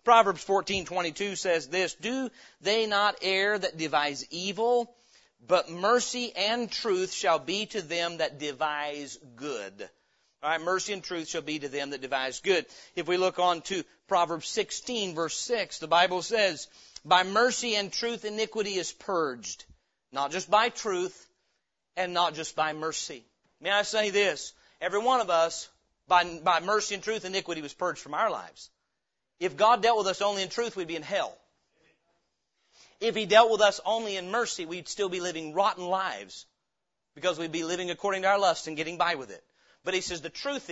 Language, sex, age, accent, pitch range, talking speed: English, male, 40-59, American, 165-215 Hz, 185 wpm